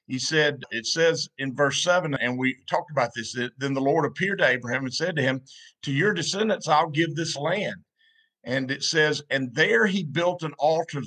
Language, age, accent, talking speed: English, 50-69, American, 205 wpm